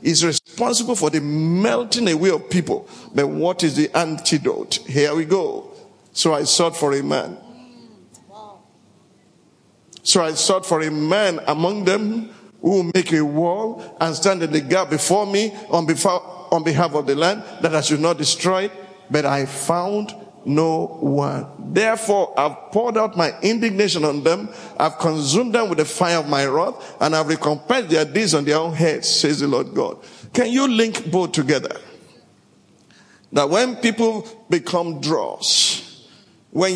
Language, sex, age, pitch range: English, male, 50-69, 160-225 Hz